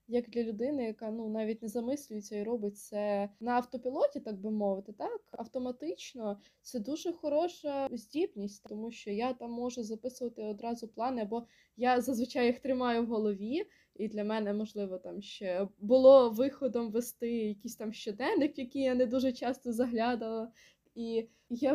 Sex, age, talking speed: female, 20-39, 155 wpm